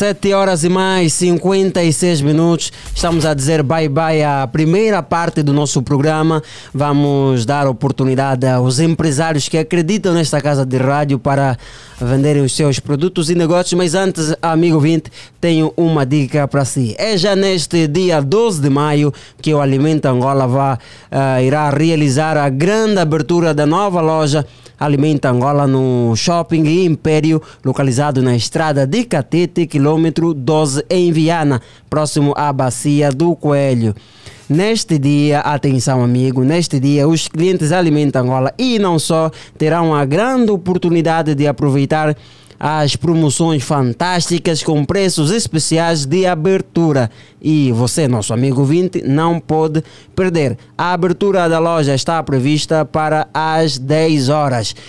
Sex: male